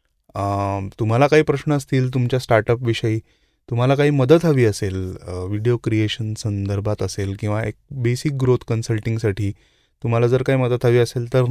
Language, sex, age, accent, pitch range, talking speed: Marathi, male, 20-39, native, 110-135 Hz, 120 wpm